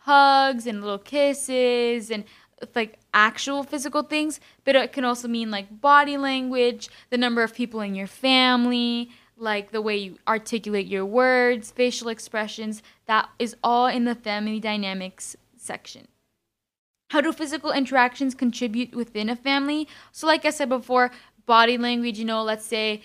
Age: 10-29